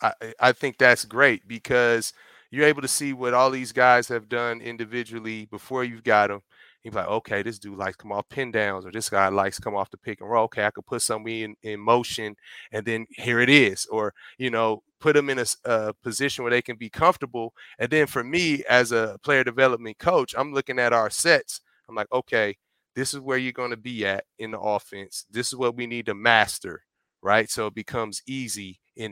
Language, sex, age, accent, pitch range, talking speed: English, male, 30-49, American, 110-130 Hz, 230 wpm